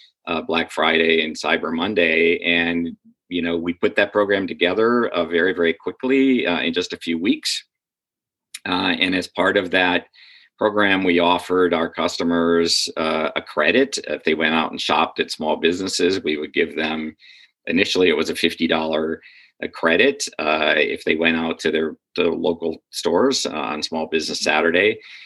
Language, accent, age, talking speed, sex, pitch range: English, American, 50-69, 180 wpm, male, 85-100 Hz